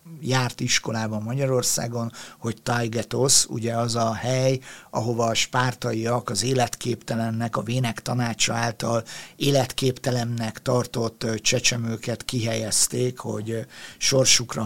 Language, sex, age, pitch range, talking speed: Hungarian, male, 50-69, 115-130 Hz, 100 wpm